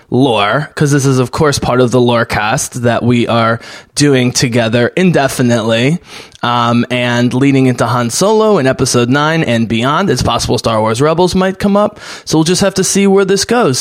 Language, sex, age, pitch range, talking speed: English, male, 20-39, 120-155 Hz, 195 wpm